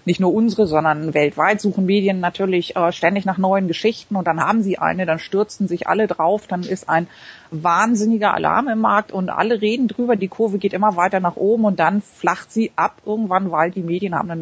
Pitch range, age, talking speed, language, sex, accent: 180-215 Hz, 40-59, 215 wpm, German, female, German